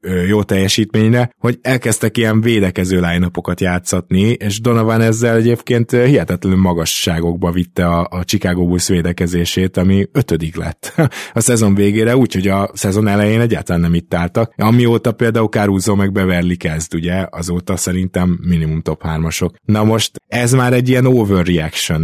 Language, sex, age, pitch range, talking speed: Hungarian, male, 20-39, 90-110 Hz, 140 wpm